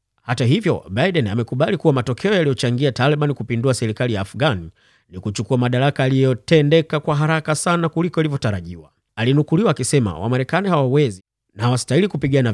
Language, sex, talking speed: Swahili, male, 135 wpm